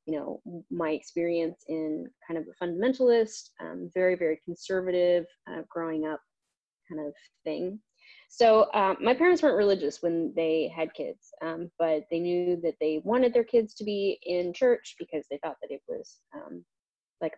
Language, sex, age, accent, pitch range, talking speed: English, female, 20-39, American, 170-235 Hz, 175 wpm